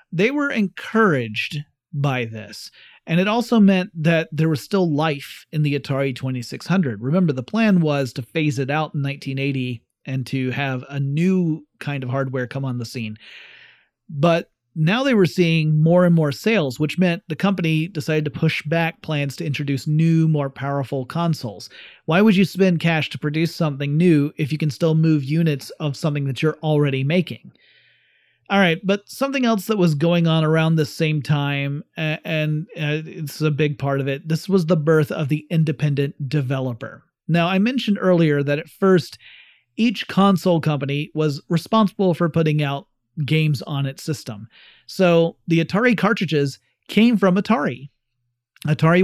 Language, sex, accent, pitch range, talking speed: English, male, American, 140-175 Hz, 170 wpm